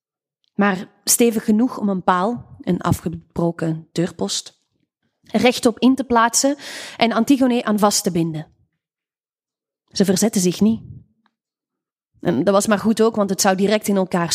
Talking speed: 140 wpm